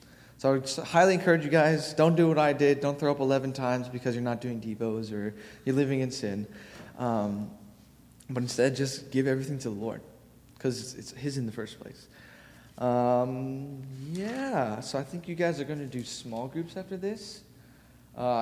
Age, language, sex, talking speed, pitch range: 20-39, English, male, 190 wpm, 110-135 Hz